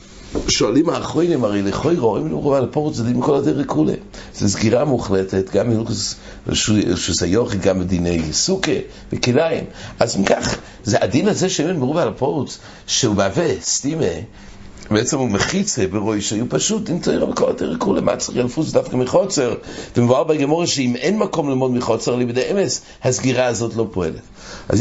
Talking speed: 145 wpm